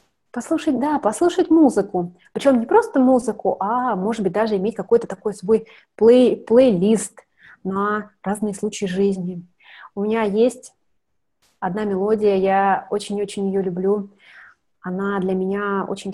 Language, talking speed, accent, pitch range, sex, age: Russian, 130 wpm, native, 195-235 Hz, female, 20-39